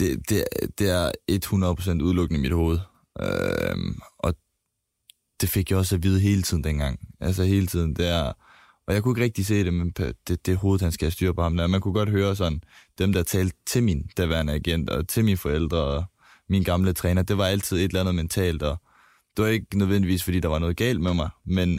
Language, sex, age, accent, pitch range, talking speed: Danish, male, 20-39, native, 85-100 Hz, 220 wpm